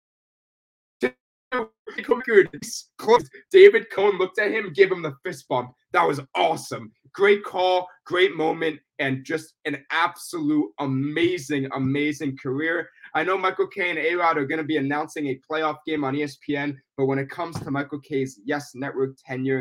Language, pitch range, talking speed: English, 130-180 Hz, 155 wpm